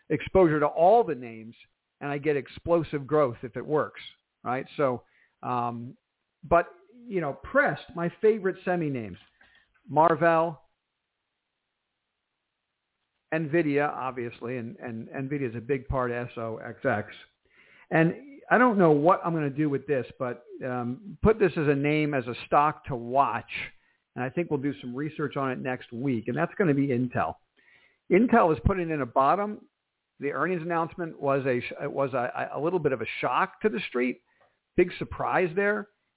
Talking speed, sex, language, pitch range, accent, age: 165 wpm, male, English, 135-175 Hz, American, 50-69